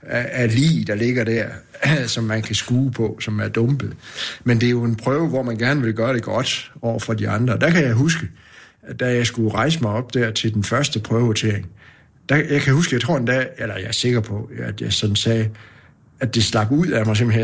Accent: native